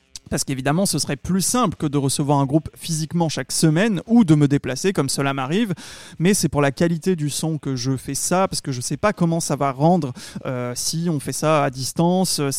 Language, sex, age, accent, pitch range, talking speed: French, male, 20-39, French, 145-175 Hz, 235 wpm